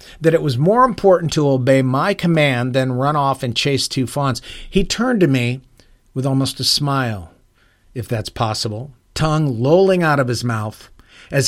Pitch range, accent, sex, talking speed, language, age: 115-155 Hz, American, male, 180 wpm, English, 50-69